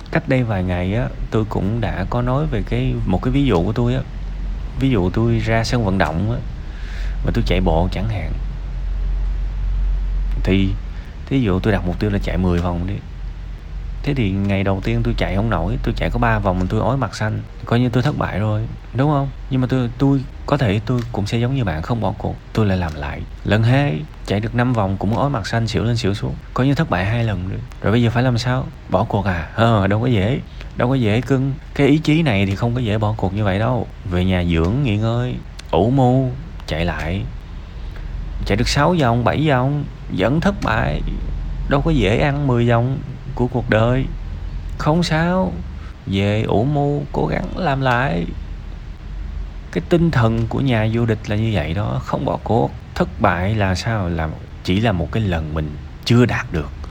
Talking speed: 215 wpm